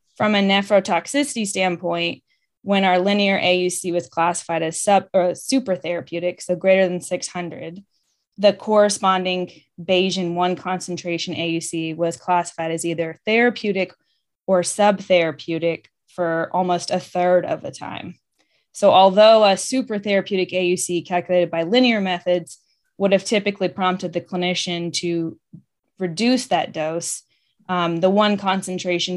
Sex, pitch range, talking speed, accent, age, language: female, 170-195 Hz, 130 wpm, American, 20-39, English